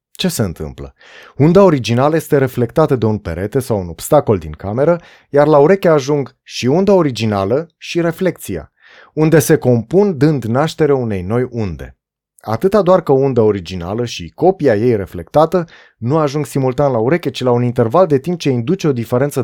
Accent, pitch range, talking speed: native, 110-155 Hz, 175 wpm